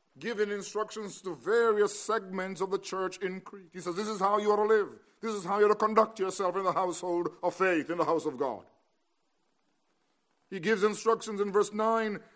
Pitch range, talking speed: 190-225 Hz, 210 wpm